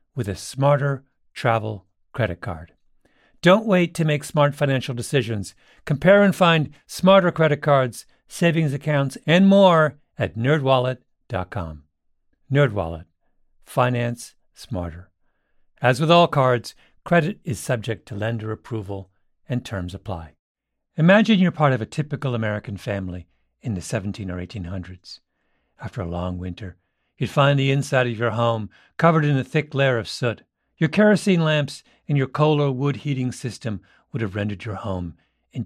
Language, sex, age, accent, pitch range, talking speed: English, male, 50-69, American, 95-155 Hz, 150 wpm